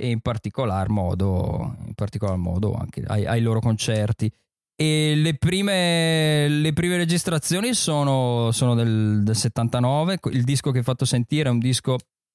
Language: Italian